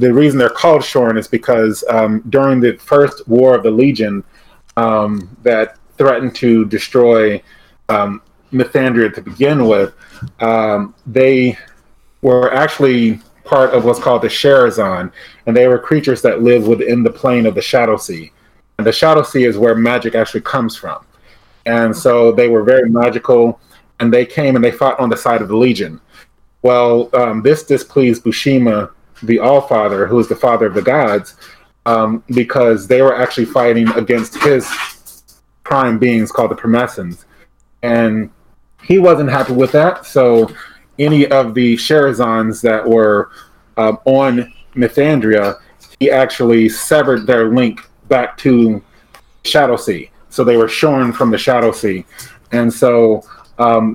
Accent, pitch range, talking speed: American, 115-130 Hz, 155 wpm